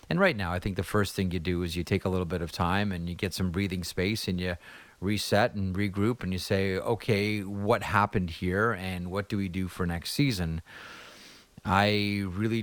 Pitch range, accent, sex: 90-105 Hz, American, male